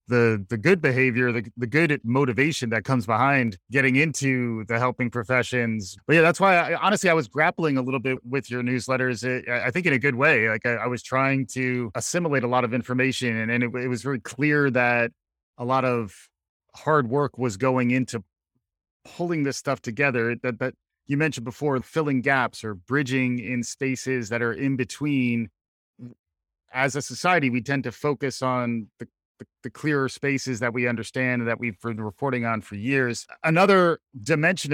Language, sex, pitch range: English, male, 115-135 Hz